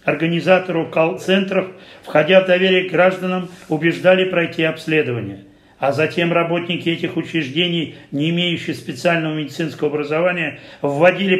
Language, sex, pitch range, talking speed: Russian, male, 150-170 Hz, 110 wpm